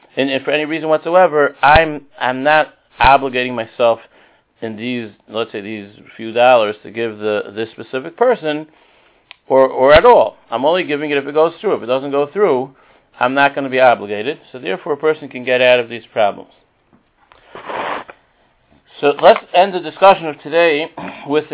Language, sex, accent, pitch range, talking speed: English, male, American, 125-155 Hz, 180 wpm